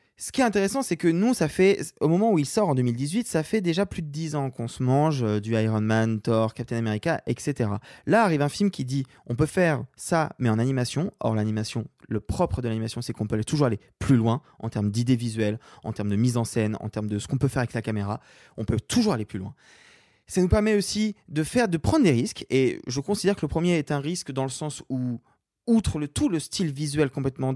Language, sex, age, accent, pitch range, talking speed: French, male, 20-39, French, 115-165 Hz, 250 wpm